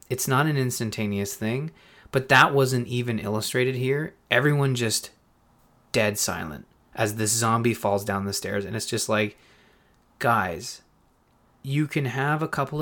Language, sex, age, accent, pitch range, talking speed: English, male, 30-49, American, 110-140 Hz, 150 wpm